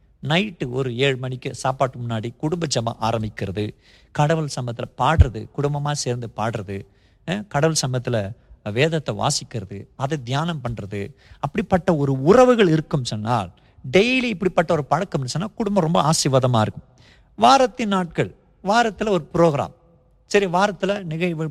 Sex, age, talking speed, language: male, 50-69, 125 wpm, Tamil